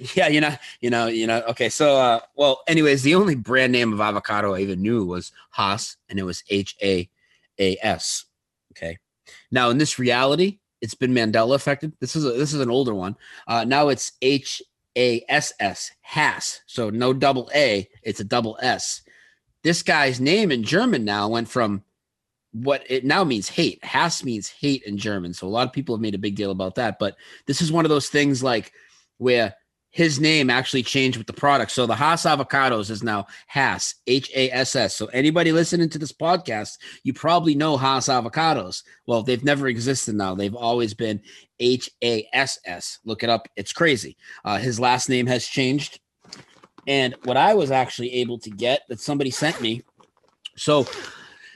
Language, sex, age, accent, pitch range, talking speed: English, male, 30-49, American, 110-140 Hz, 180 wpm